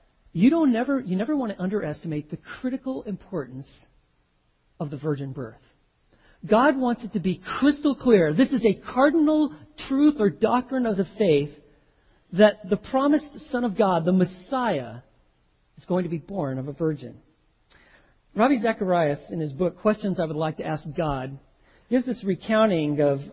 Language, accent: English, American